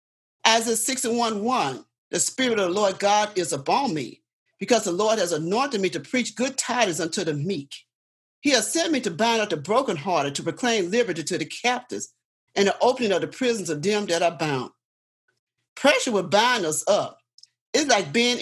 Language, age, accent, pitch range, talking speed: English, 40-59, American, 185-260 Hz, 200 wpm